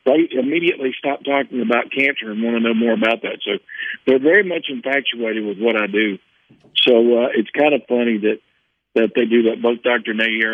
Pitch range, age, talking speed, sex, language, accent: 110-130 Hz, 50-69, 205 wpm, male, English, American